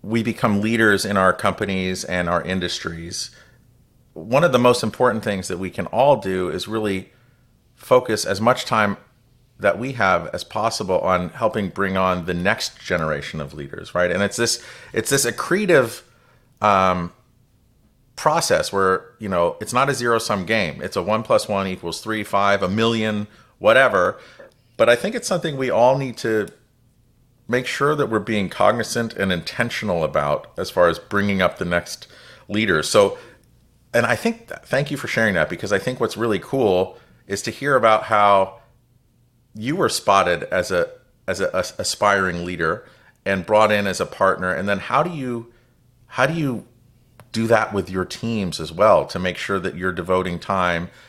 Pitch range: 95-120 Hz